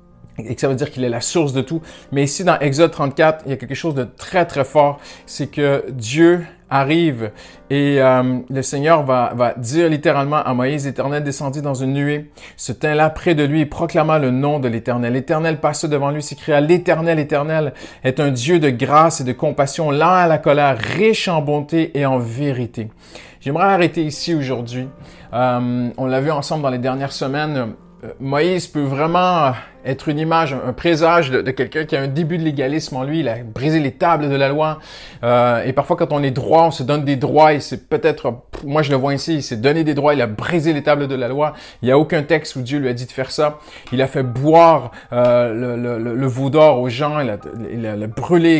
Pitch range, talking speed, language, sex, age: 130-160 Hz, 230 wpm, French, male, 40-59